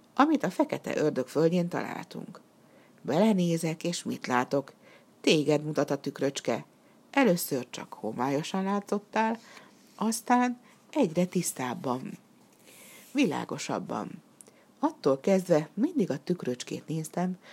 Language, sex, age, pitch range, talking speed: Hungarian, female, 60-79, 145-210 Hz, 90 wpm